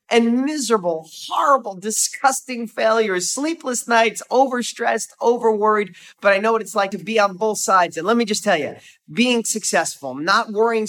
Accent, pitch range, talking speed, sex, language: American, 160-225 Hz, 165 wpm, male, English